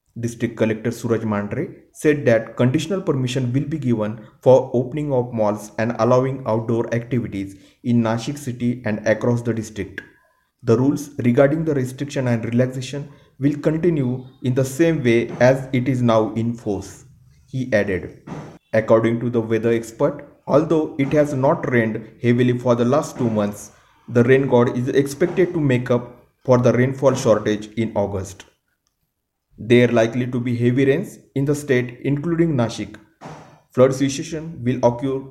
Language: Marathi